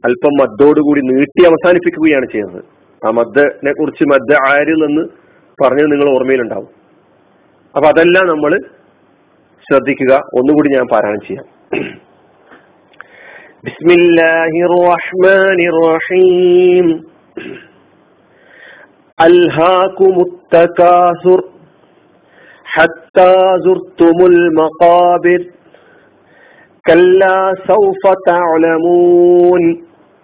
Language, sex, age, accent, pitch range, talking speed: Malayalam, male, 40-59, native, 170-190 Hz, 45 wpm